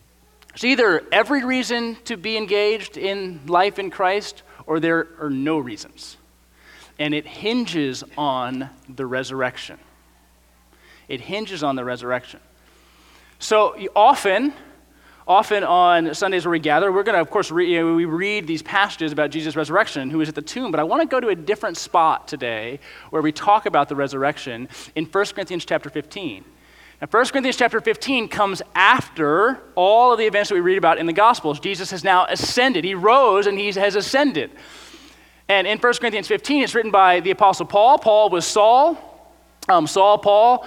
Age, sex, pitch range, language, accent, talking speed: 30-49, male, 160-225 Hz, English, American, 175 wpm